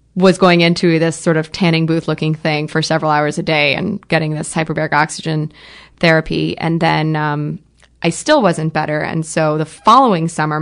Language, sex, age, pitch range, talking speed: English, female, 20-39, 155-170 Hz, 185 wpm